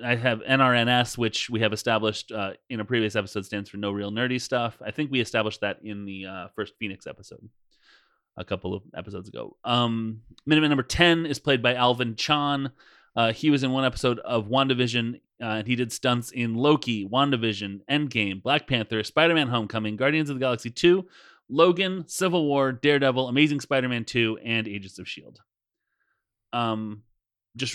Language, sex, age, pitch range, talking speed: English, male, 30-49, 110-140 Hz, 175 wpm